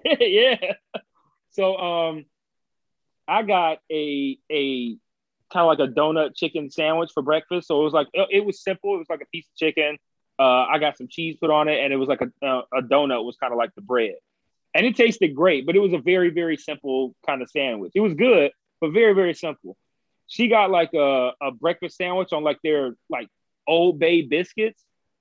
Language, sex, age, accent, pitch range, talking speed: English, male, 30-49, American, 140-180 Hz, 210 wpm